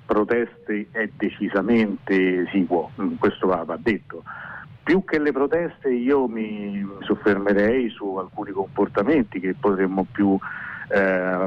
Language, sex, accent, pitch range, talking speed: Italian, male, native, 95-110 Hz, 115 wpm